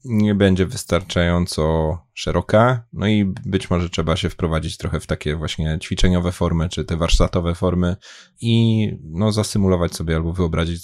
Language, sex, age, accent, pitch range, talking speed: Polish, male, 20-39, native, 85-95 Hz, 150 wpm